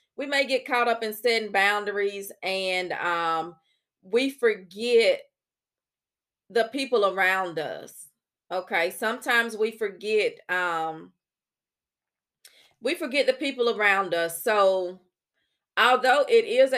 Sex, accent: female, American